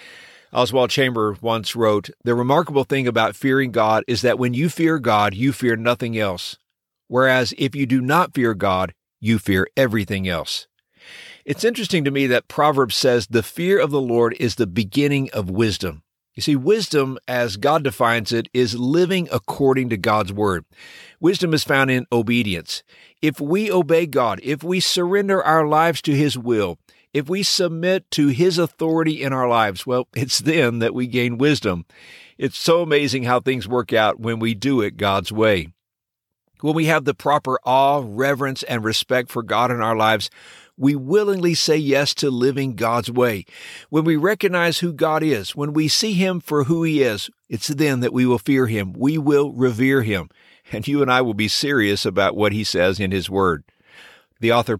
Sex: male